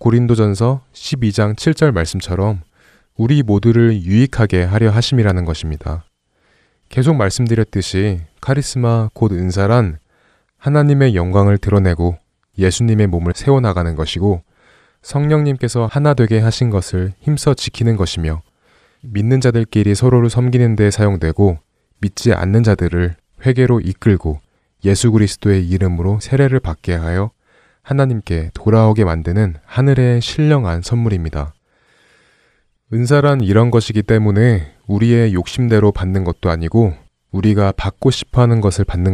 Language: Korean